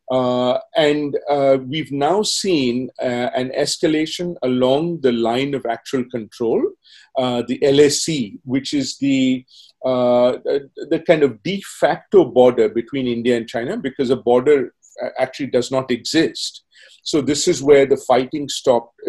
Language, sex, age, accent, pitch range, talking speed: English, male, 40-59, Indian, 125-165 Hz, 150 wpm